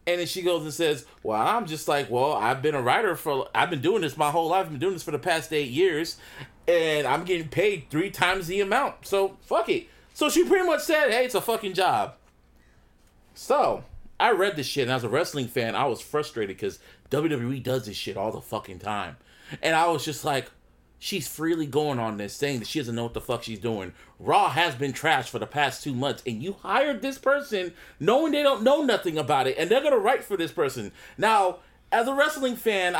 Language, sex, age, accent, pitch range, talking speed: English, male, 30-49, American, 165-265 Hz, 235 wpm